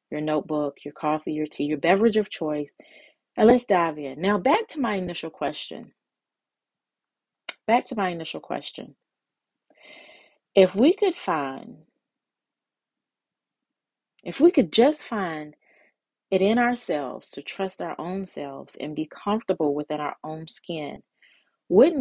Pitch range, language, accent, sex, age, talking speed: 150-195 Hz, English, American, female, 30-49, 135 wpm